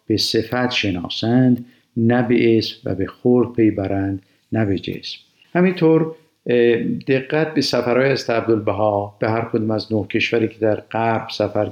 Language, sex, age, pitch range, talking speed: Persian, male, 50-69, 105-125 Hz, 145 wpm